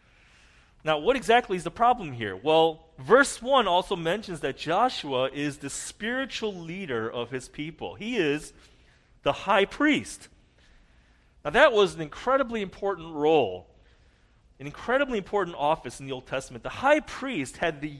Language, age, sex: English, 40-59, male